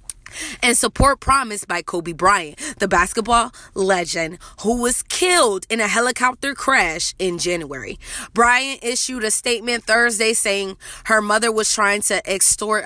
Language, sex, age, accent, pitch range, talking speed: English, female, 20-39, American, 190-240 Hz, 140 wpm